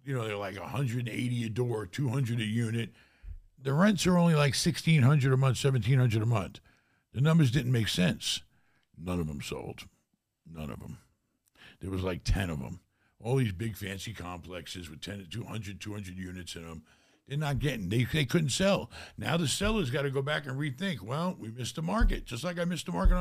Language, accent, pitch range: English, American, 110-170 Hz